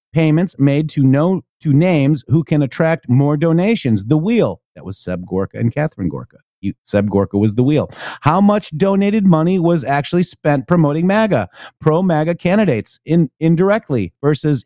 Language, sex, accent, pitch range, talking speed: English, male, American, 120-165 Hz, 170 wpm